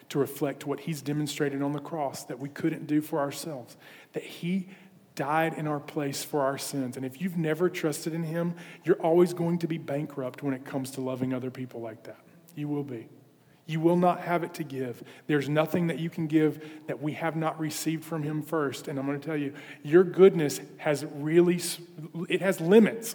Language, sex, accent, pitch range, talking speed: English, male, American, 150-195 Hz, 215 wpm